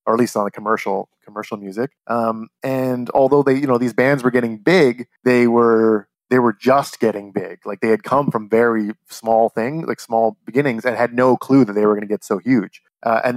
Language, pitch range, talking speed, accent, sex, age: English, 110-130 Hz, 230 wpm, American, male, 30-49